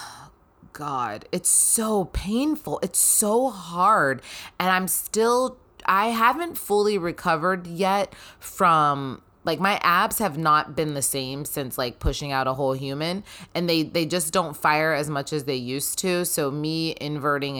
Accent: American